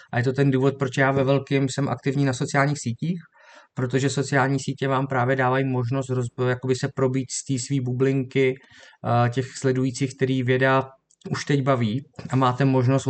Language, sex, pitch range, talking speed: Czech, male, 130-145 Hz, 180 wpm